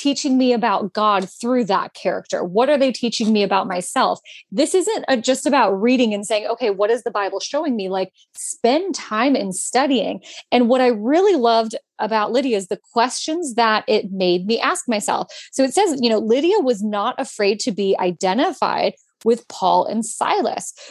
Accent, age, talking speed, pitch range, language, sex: American, 20-39, 190 wpm, 200-260 Hz, English, female